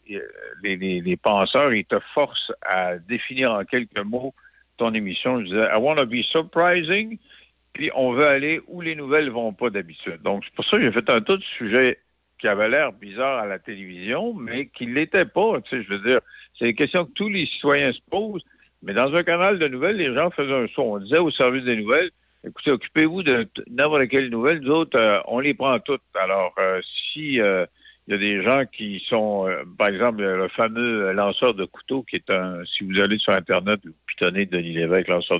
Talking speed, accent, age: 220 wpm, French, 60-79